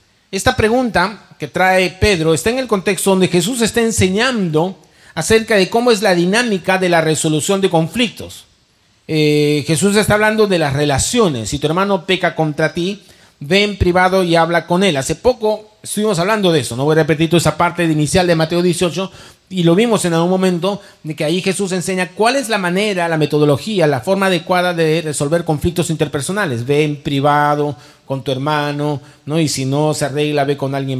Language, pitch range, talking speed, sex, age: Spanish, 150-195 Hz, 190 wpm, male, 40-59